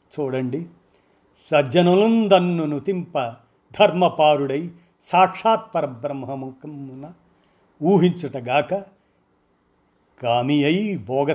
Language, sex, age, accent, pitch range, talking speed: Telugu, male, 50-69, native, 125-150 Hz, 55 wpm